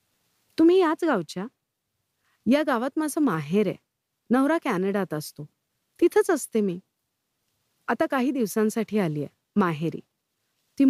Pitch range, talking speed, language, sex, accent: 175-255 Hz, 115 wpm, Marathi, female, native